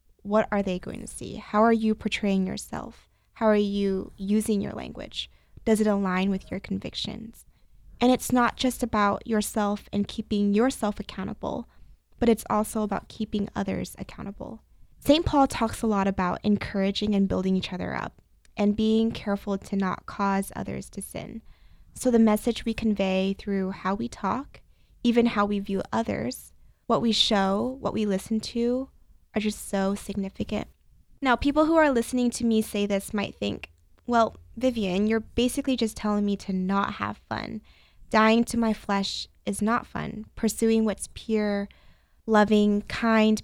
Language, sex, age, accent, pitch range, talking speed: English, female, 20-39, American, 200-225 Hz, 165 wpm